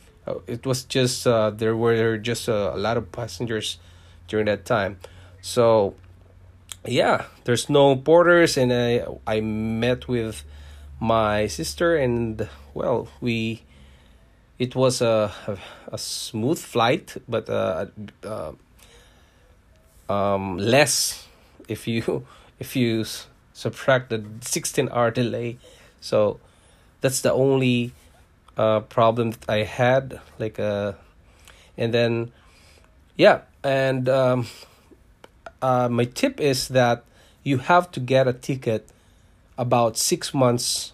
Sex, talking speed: male, 120 wpm